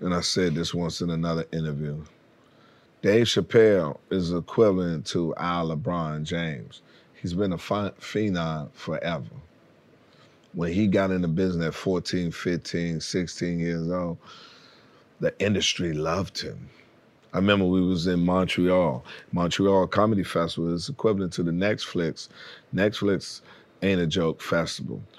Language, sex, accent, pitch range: English, male, American, 85-105 Hz